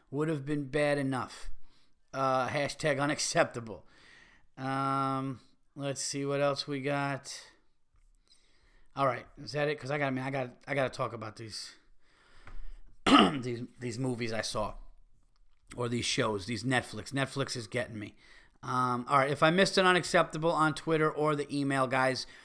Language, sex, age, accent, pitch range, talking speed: English, male, 30-49, American, 130-155 Hz, 165 wpm